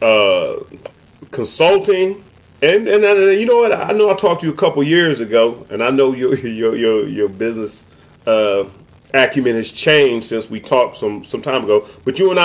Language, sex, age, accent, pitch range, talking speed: English, male, 30-49, American, 125-200 Hz, 200 wpm